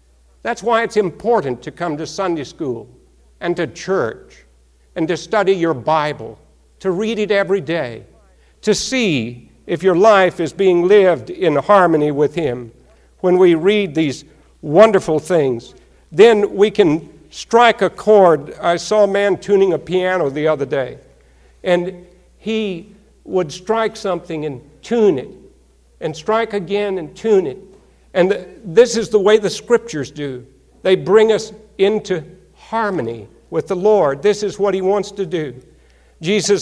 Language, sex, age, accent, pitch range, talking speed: English, male, 60-79, American, 140-195 Hz, 155 wpm